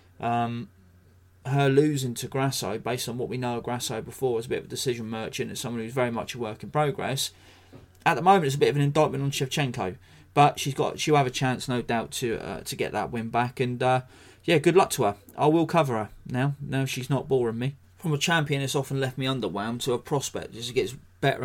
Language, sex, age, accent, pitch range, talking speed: English, male, 30-49, British, 100-140 Hz, 255 wpm